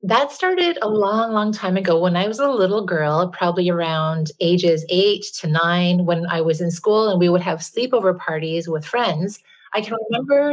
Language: English